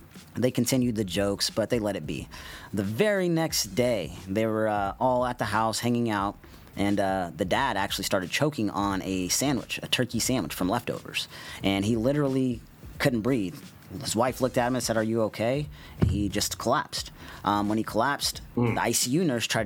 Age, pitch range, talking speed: 30-49, 100-125 Hz, 190 wpm